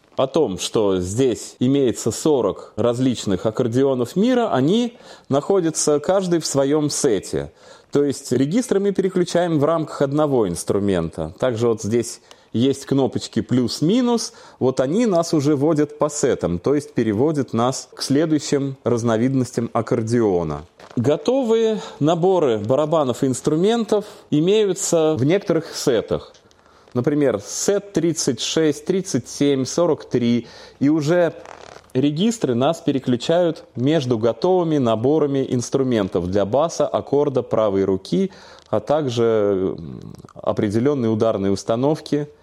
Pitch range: 120-165 Hz